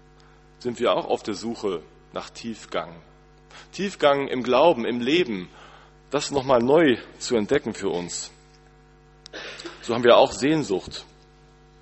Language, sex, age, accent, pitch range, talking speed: German, male, 40-59, German, 105-150 Hz, 125 wpm